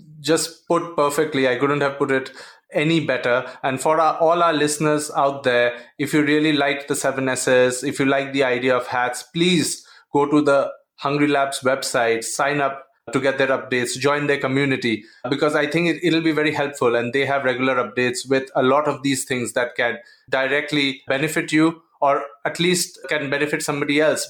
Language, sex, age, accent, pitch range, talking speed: English, male, 30-49, Indian, 135-160 Hz, 190 wpm